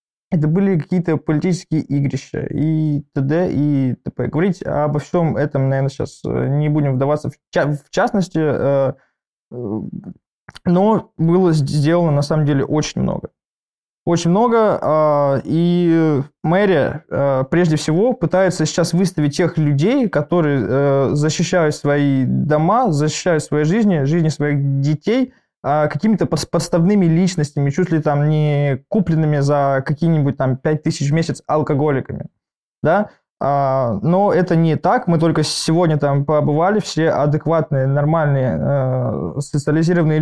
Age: 20-39